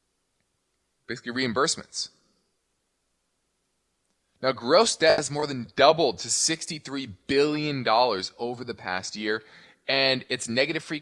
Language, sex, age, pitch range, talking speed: English, male, 20-39, 120-155 Hz, 110 wpm